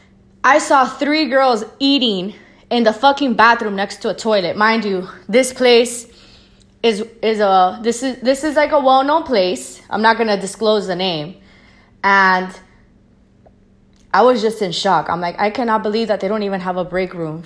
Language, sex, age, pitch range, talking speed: English, female, 20-39, 185-250 Hz, 185 wpm